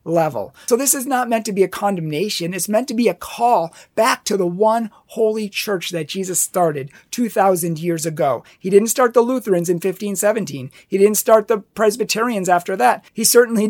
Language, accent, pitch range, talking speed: English, American, 170-215 Hz, 195 wpm